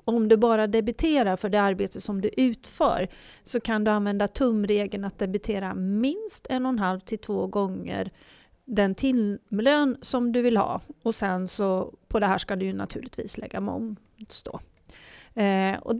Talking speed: 165 wpm